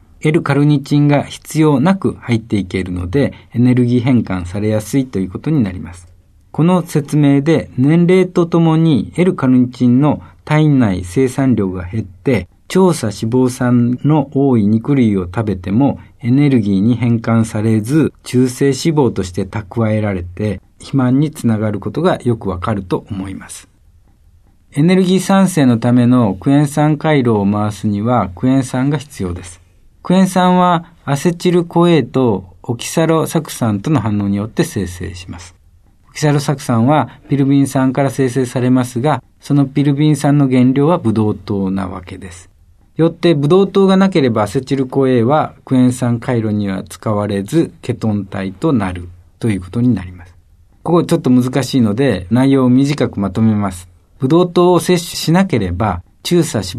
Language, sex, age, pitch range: Japanese, male, 50-69, 100-145 Hz